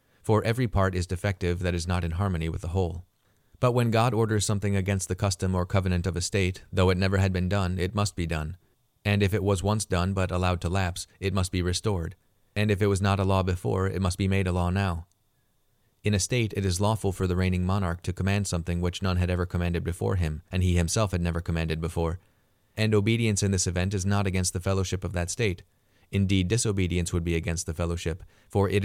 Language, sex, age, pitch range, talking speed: English, male, 30-49, 90-100 Hz, 235 wpm